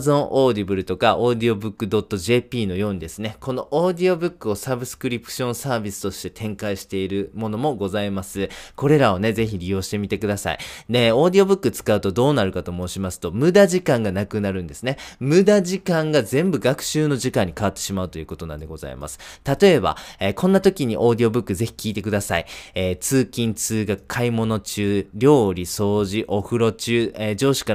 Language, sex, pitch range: Japanese, male, 100-145 Hz